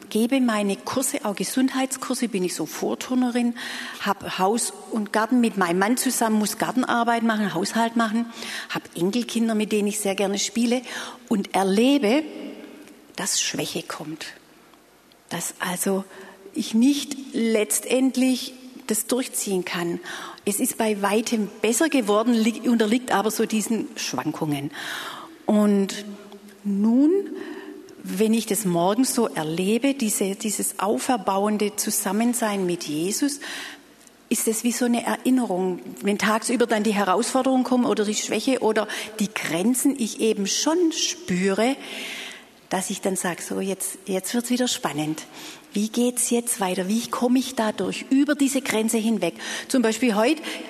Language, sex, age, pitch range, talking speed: German, female, 40-59, 195-255 Hz, 135 wpm